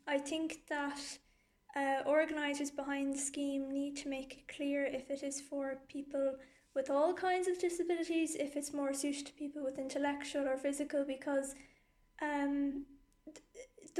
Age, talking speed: 20-39, 155 wpm